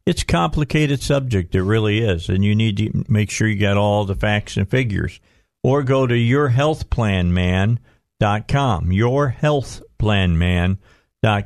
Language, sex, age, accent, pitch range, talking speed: English, male, 50-69, American, 105-130 Hz, 160 wpm